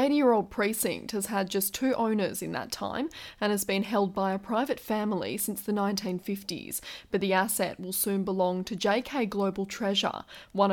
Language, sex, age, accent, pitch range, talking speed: English, female, 20-39, Australian, 190-215 Hz, 185 wpm